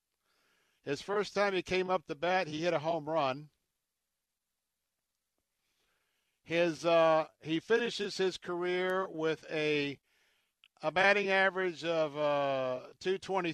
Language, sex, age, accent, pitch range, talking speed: English, male, 60-79, American, 140-180 Hz, 125 wpm